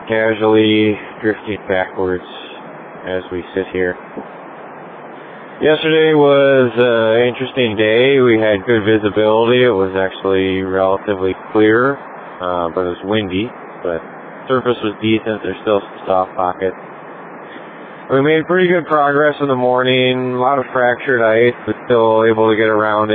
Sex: male